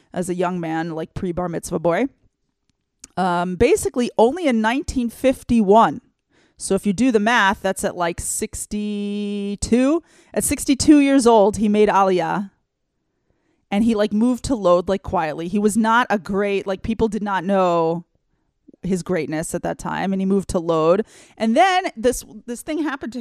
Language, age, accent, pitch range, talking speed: English, 30-49, American, 180-230 Hz, 170 wpm